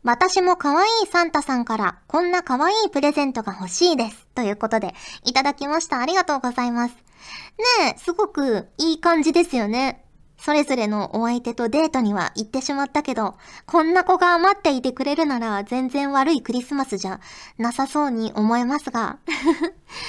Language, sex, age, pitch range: Japanese, male, 20-39, 220-300 Hz